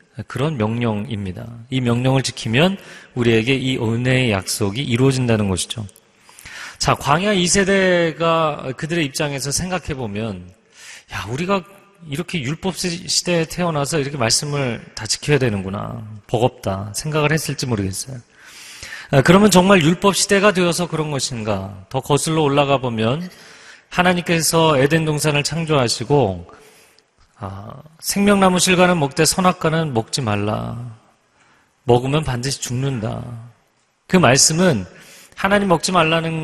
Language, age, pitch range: Korean, 30-49, 120-175 Hz